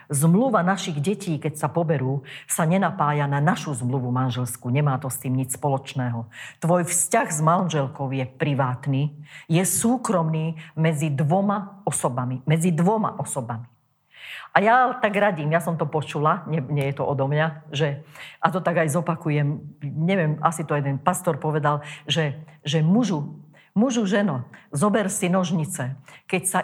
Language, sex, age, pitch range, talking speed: Slovak, female, 50-69, 145-180 Hz, 155 wpm